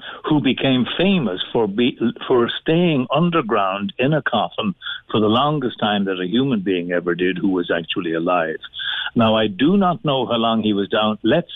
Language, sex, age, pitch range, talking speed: English, male, 60-79, 105-140 Hz, 185 wpm